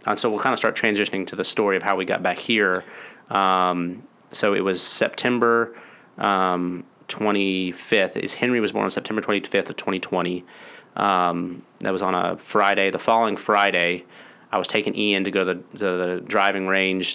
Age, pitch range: 30-49, 95-105 Hz